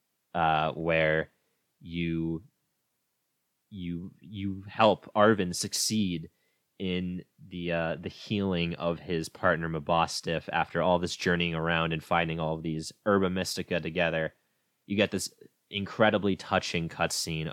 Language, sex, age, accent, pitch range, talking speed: English, male, 20-39, American, 80-95 Hz, 125 wpm